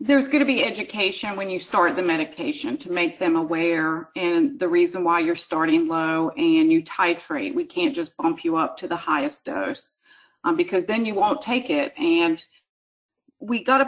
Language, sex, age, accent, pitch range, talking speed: English, female, 40-59, American, 185-275 Hz, 185 wpm